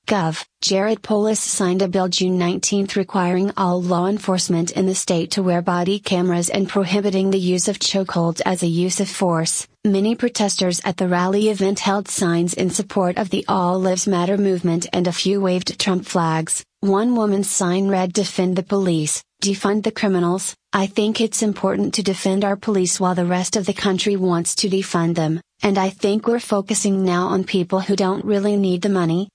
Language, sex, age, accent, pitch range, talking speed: English, female, 30-49, American, 180-200 Hz, 190 wpm